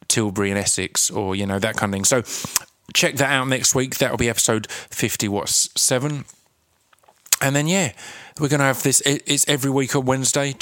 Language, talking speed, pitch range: English, 190 wpm, 105-125 Hz